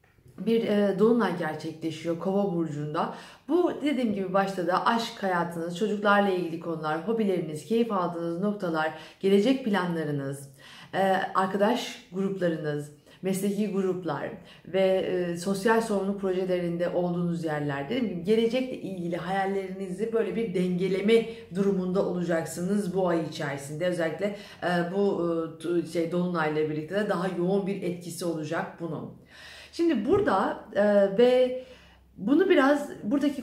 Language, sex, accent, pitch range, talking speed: Turkish, female, native, 175-205 Hz, 110 wpm